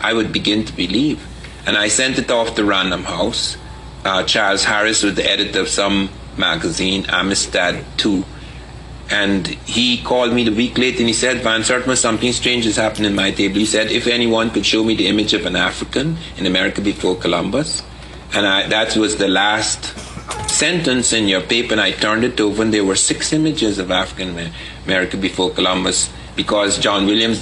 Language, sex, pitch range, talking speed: English, male, 95-115 Hz, 190 wpm